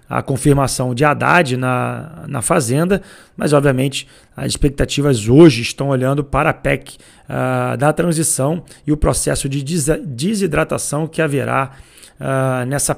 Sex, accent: male, Brazilian